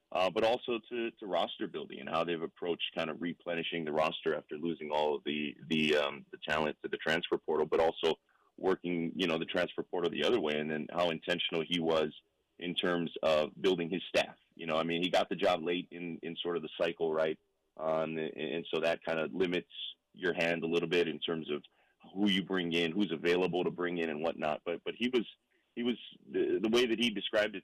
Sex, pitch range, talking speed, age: male, 80-95 Hz, 235 wpm, 30-49